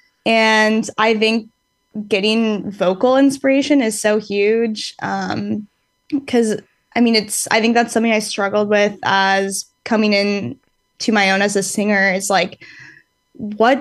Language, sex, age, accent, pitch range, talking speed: English, female, 10-29, American, 200-225 Hz, 145 wpm